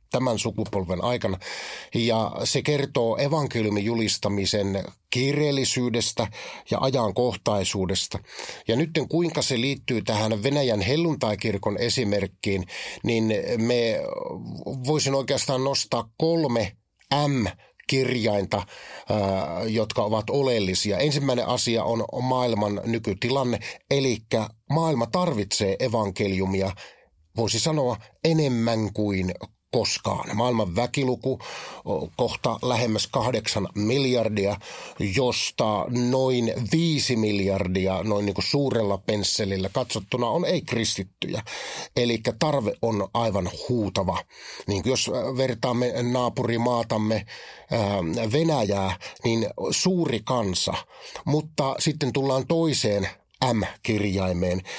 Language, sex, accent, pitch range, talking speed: Finnish, male, native, 105-130 Hz, 90 wpm